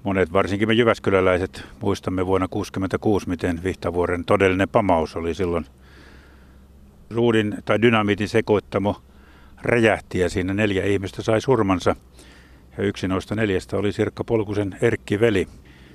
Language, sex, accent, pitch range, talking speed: Finnish, male, native, 90-105 Hz, 120 wpm